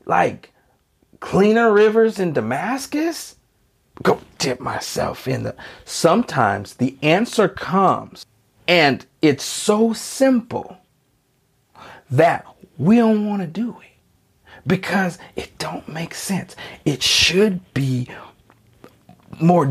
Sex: male